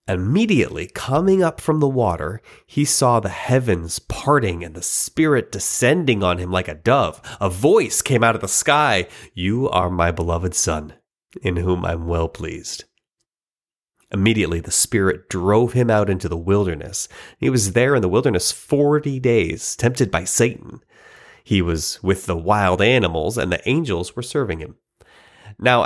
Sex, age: male, 30-49